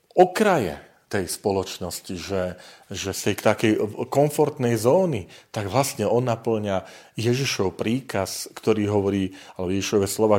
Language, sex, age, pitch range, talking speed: Slovak, male, 40-59, 100-140 Hz, 115 wpm